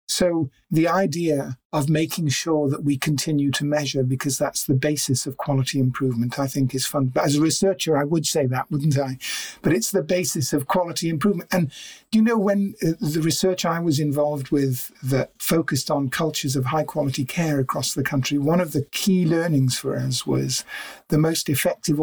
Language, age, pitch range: English, 50-69, 135-160 Hz